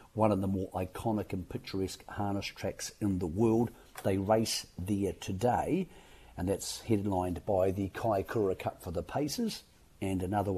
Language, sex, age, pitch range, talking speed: English, male, 50-69, 95-115 Hz, 165 wpm